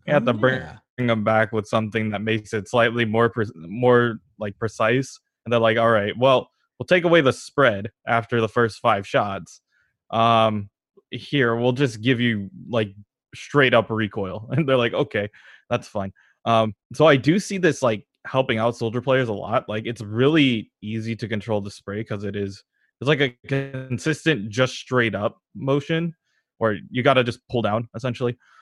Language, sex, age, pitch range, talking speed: English, male, 20-39, 110-130 Hz, 190 wpm